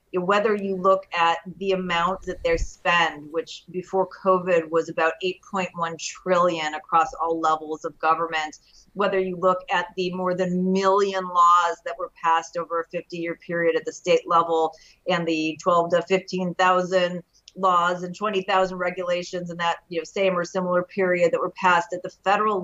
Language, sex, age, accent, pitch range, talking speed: English, female, 40-59, American, 170-205 Hz, 170 wpm